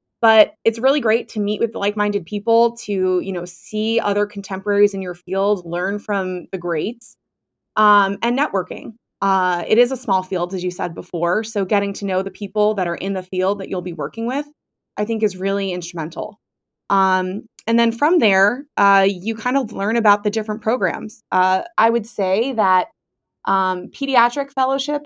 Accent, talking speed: American, 190 wpm